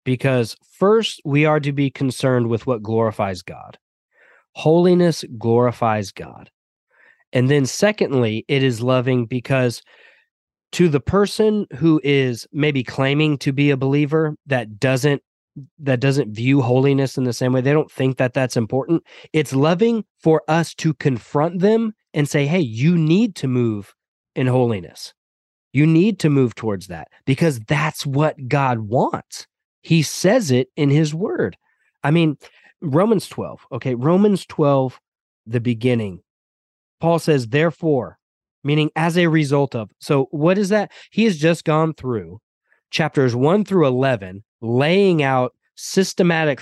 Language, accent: English, American